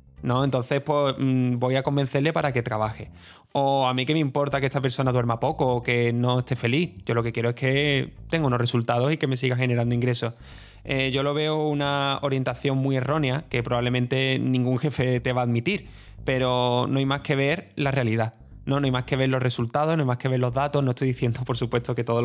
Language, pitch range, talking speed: Spanish, 120-140 Hz, 230 wpm